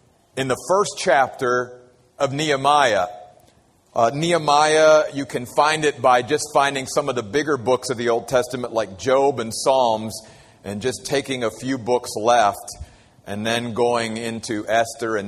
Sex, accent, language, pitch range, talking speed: male, American, English, 115-180 Hz, 160 wpm